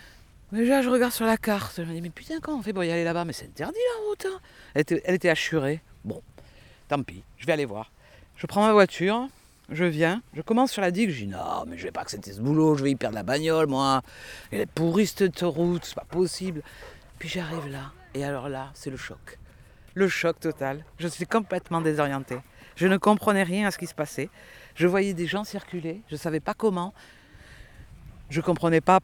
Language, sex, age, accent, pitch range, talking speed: French, female, 50-69, French, 145-200 Hz, 235 wpm